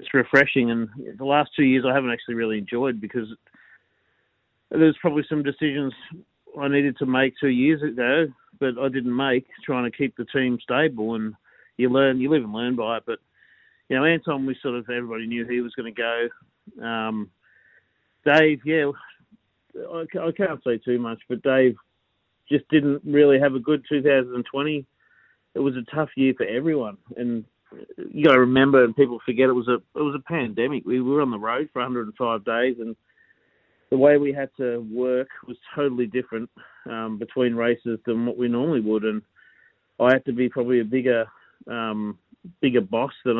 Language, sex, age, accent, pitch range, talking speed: English, male, 40-59, Australian, 115-140 Hz, 185 wpm